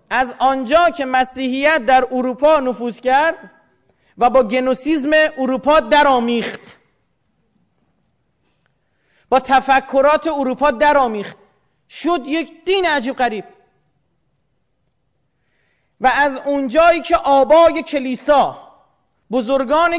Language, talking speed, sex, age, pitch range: Persian, 85 wpm, male, 40-59, 255-315 Hz